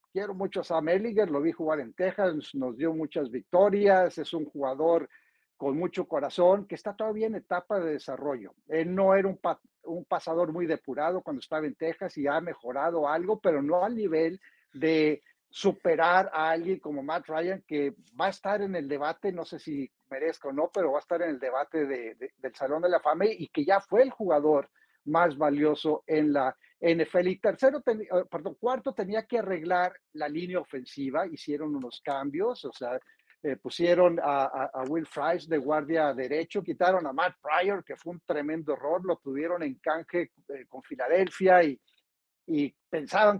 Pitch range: 155-200 Hz